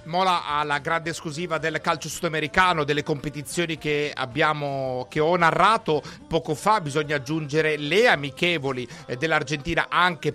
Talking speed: 130 wpm